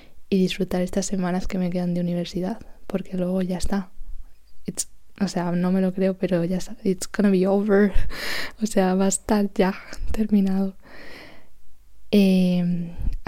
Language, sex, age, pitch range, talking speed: Spanish, female, 20-39, 180-195 Hz, 160 wpm